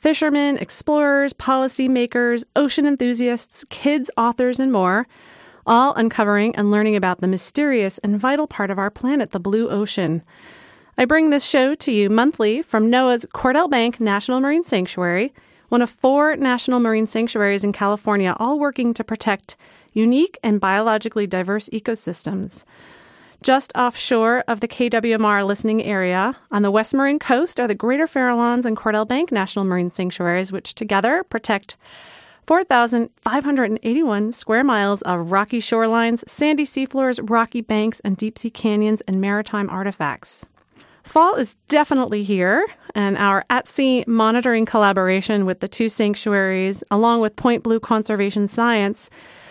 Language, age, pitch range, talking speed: English, 30-49, 205-255 Hz, 140 wpm